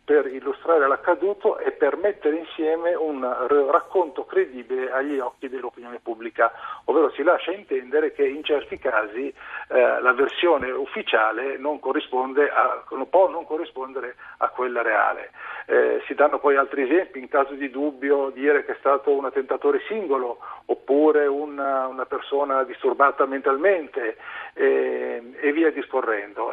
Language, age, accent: Italian, 50-69, native